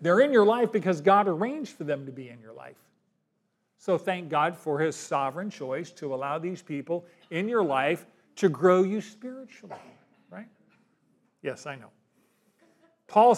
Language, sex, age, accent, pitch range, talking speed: English, male, 50-69, American, 160-210 Hz, 165 wpm